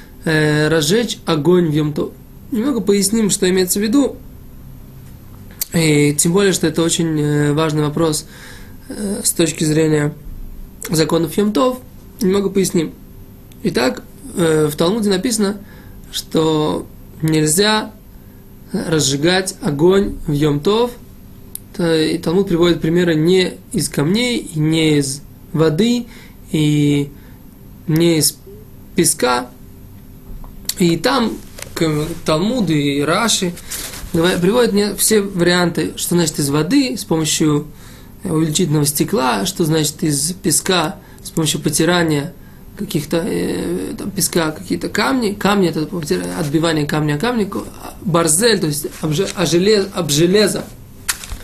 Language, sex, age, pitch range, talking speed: Russian, male, 20-39, 155-195 Hz, 105 wpm